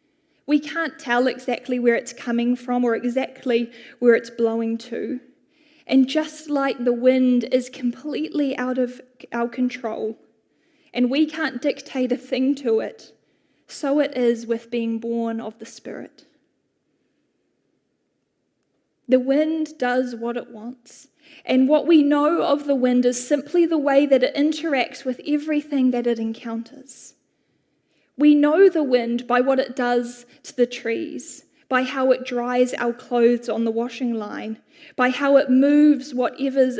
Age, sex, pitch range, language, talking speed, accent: 10-29, female, 245-295 Hz, English, 150 wpm, Australian